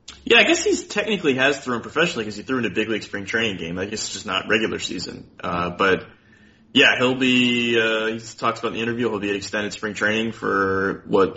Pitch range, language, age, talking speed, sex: 95-110 Hz, English, 20-39, 245 wpm, male